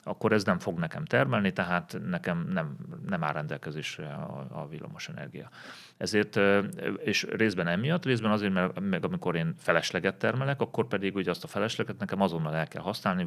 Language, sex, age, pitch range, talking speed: Hungarian, male, 30-49, 80-110 Hz, 165 wpm